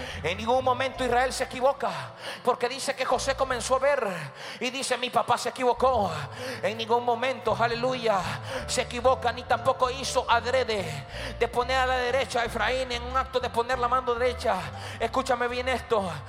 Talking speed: 175 wpm